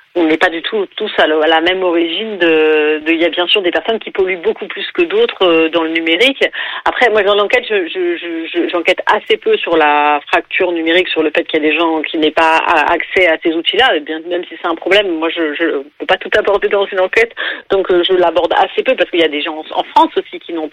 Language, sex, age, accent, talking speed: French, female, 40-59, French, 270 wpm